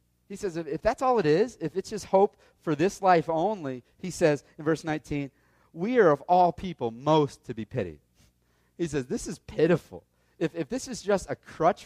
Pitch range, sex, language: 125-180 Hz, male, English